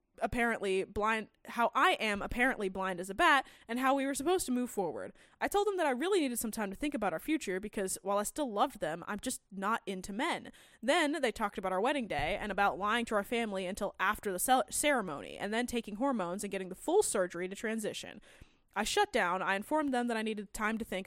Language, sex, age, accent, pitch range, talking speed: English, female, 20-39, American, 195-265 Hz, 240 wpm